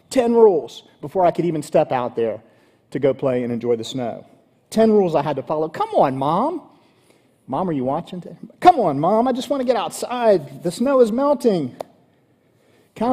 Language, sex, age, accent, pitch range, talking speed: English, male, 40-59, American, 135-190 Hz, 195 wpm